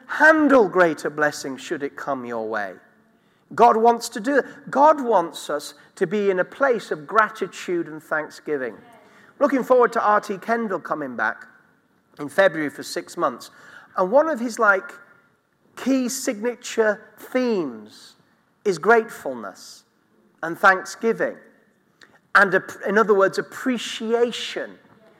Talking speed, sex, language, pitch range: 130 wpm, male, English, 165-240 Hz